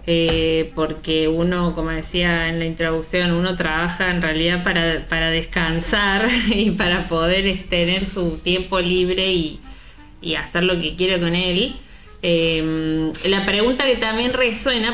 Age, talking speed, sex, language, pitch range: 20-39, 145 wpm, female, Spanish, 165-205 Hz